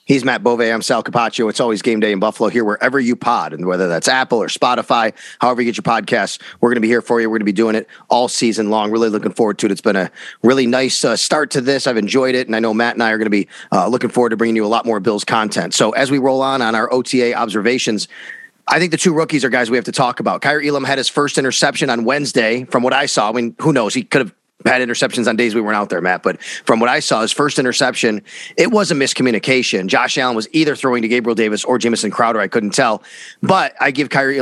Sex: male